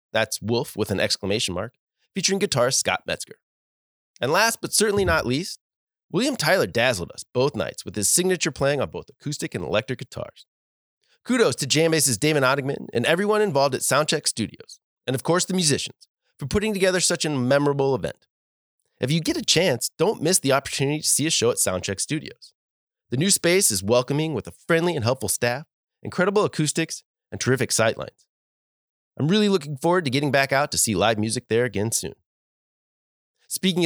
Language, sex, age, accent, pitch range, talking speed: English, male, 30-49, American, 110-165 Hz, 185 wpm